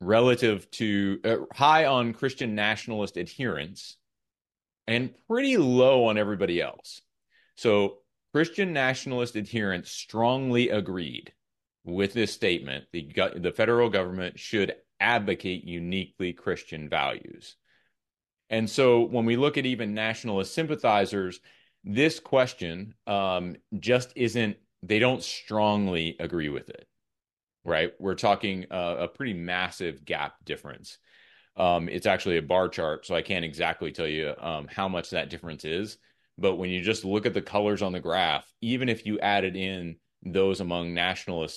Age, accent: 30-49, American